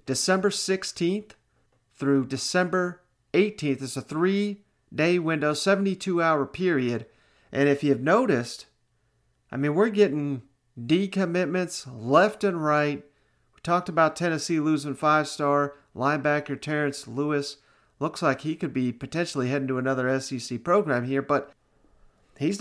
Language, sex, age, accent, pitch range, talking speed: English, male, 40-59, American, 135-165 Hz, 120 wpm